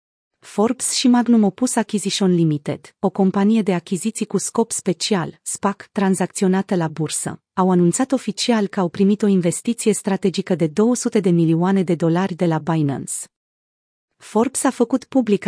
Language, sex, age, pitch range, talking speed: Romanian, female, 30-49, 175-220 Hz, 150 wpm